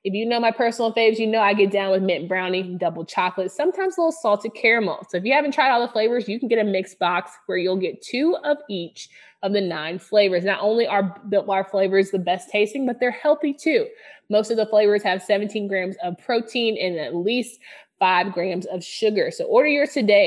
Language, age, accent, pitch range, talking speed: English, 20-39, American, 195-240 Hz, 230 wpm